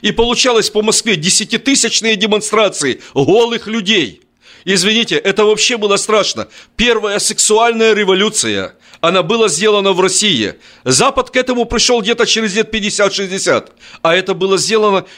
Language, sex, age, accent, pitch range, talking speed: Russian, male, 40-59, native, 195-225 Hz, 130 wpm